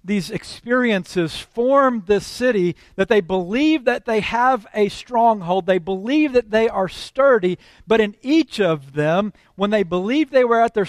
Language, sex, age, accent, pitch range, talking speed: English, male, 50-69, American, 145-205 Hz, 170 wpm